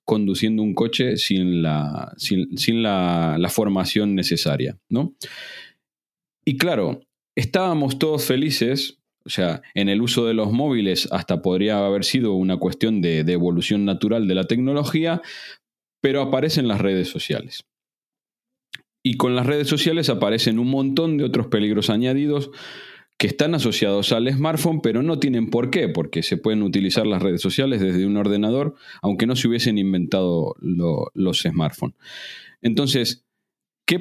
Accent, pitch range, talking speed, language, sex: Argentinian, 95-135 Hz, 145 wpm, Spanish, male